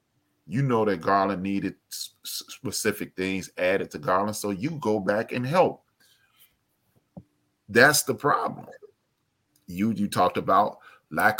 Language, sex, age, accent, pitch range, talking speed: English, male, 30-49, American, 100-130 Hz, 125 wpm